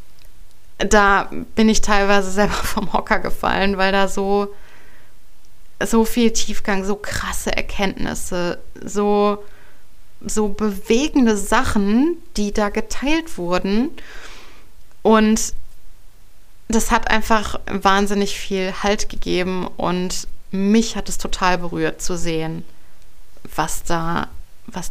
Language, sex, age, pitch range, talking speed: German, female, 20-39, 185-215 Hz, 105 wpm